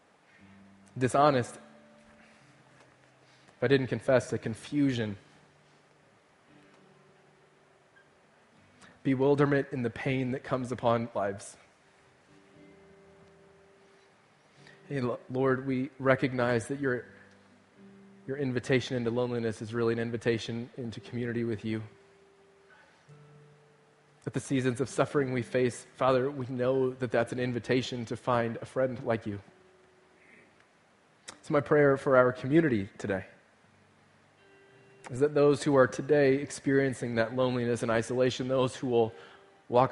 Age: 20-39